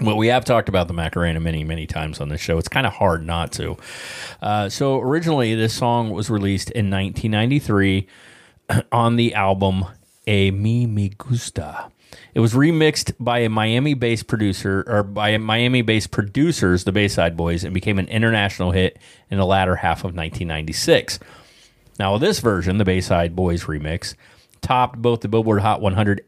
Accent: American